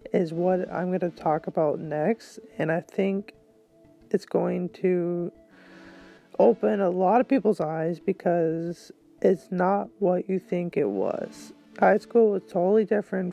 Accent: American